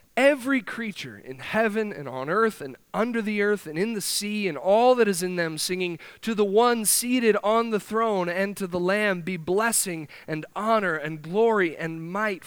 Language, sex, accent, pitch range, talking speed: English, male, American, 135-205 Hz, 195 wpm